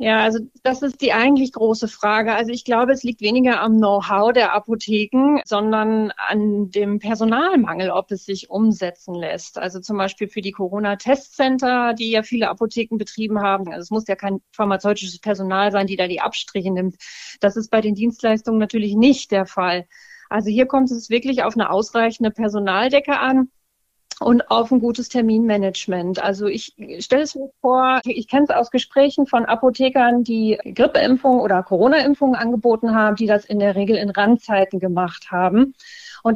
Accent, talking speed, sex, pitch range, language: German, 175 wpm, female, 200-255 Hz, German